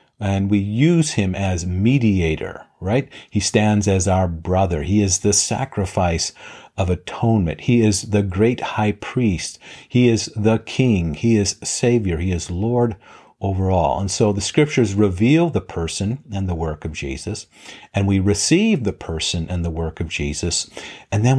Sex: male